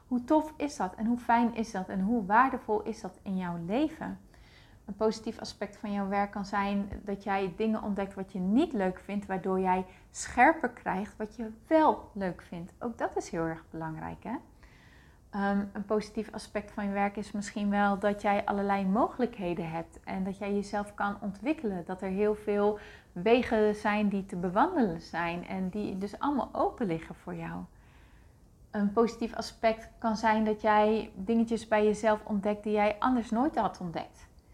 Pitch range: 195-225 Hz